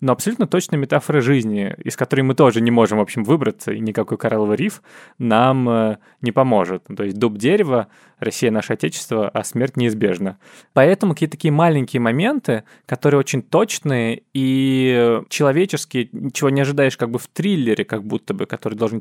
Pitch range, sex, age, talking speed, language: 115-155 Hz, male, 20-39, 165 wpm, Russian